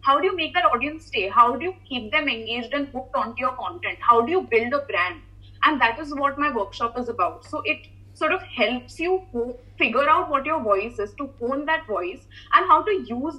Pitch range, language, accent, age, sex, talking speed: 230-315 Hz, English, Indian, 20-39, female, 240 wpm